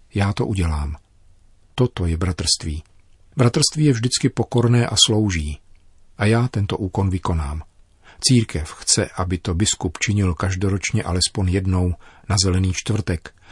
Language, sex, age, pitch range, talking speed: Czech, male, 50-69, 90-115 Hz, 130 wpm